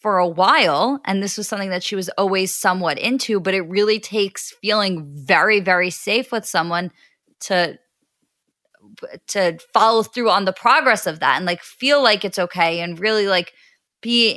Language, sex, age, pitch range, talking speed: English, female, 20-39, 185-230 Hz, 175 wpm